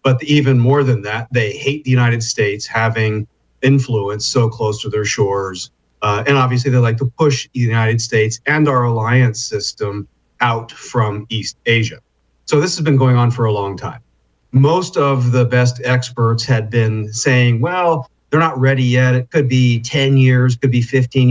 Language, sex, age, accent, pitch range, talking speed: English, male, 40-59, American, 115-135 Hz, 185 wpm